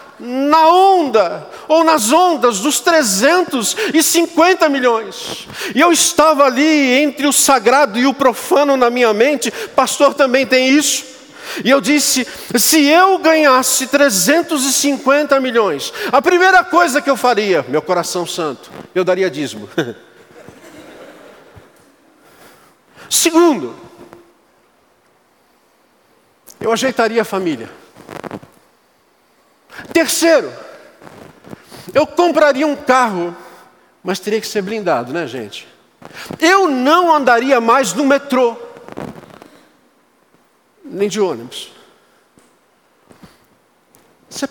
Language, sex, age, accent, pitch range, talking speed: Portuguese, male, 50-69, Brazilian, 230-300 Hz, 95 wpm